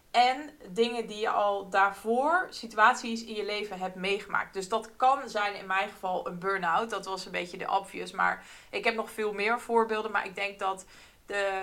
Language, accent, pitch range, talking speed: Dutch, Dutch, 190-225 Hz, 200 wpm